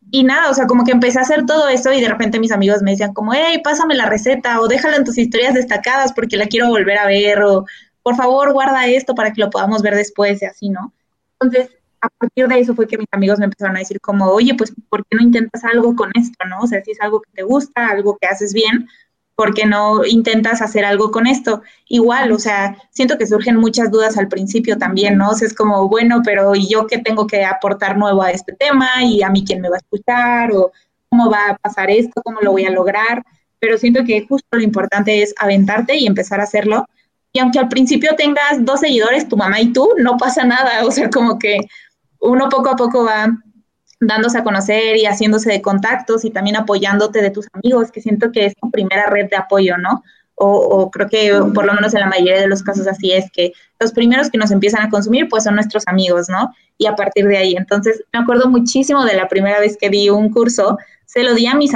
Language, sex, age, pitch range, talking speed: Spanish, female, 20-39, 205-245 Hz, 240 wpm